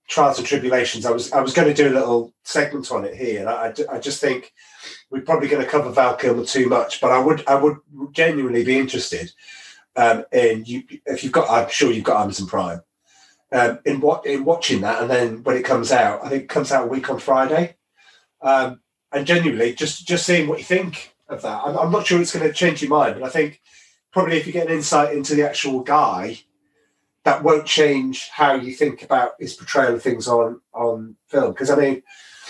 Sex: male